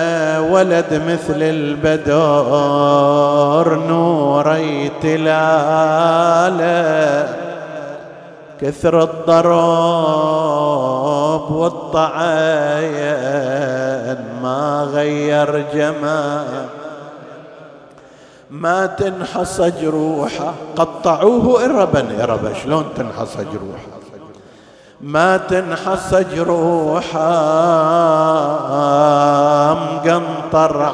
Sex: male